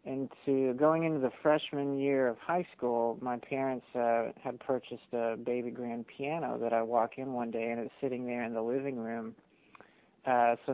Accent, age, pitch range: American, 40-59, 120-130 Hz